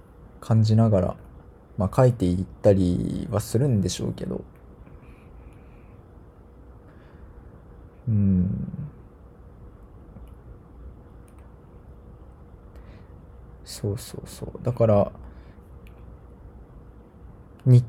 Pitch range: 95-120 Hz